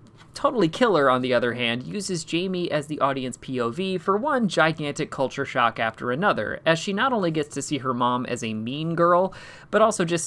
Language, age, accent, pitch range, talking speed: English, 30-49, American, 125-170 Hz, 205 wpm